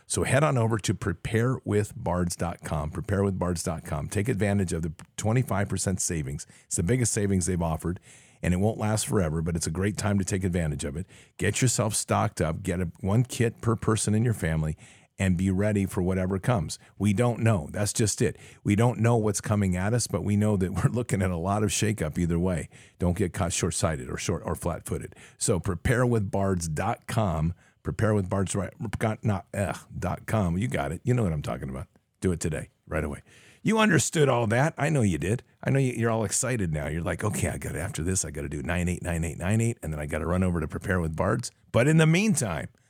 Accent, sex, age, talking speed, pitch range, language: American, male, 50-69, 210 wpm, 90-120 Hz, English